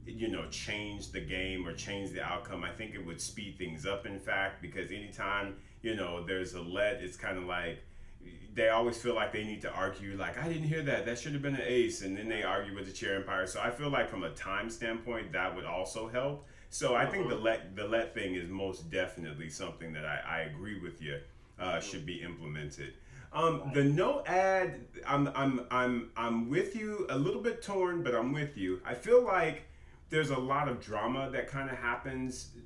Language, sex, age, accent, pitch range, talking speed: English, male, 30-49, American, 90-130 Hz, 220 wpm